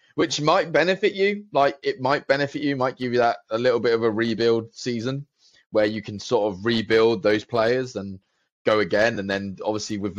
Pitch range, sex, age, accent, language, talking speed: 100-120 Hz, male, 20-39, British, English, 205 wpm